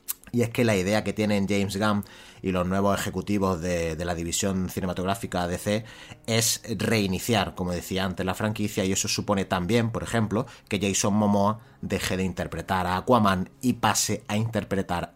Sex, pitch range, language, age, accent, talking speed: male, 95-110 Hz, Spanish, 30-49, Spanish, 175 wpm